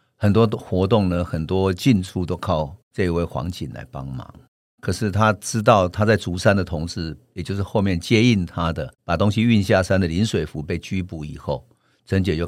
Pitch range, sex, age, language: 85-115 Hz, male, 50-69, Chinese